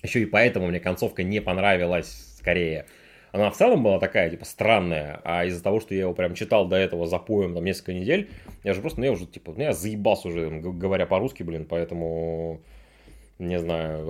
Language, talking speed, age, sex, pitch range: Russian, 195 wpm, 20-39, male, 85-110 Hz